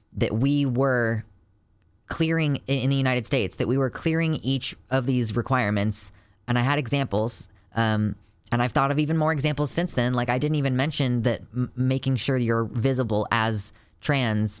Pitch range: 105-135 Hz